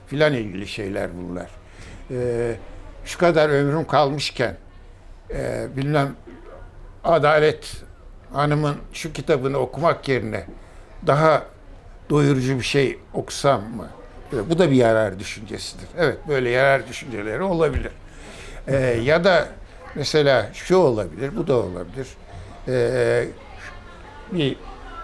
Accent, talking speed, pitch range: native, 110 wpm, 110-140 Hz